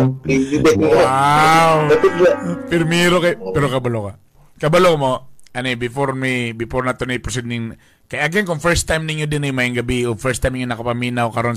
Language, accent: English, Filipino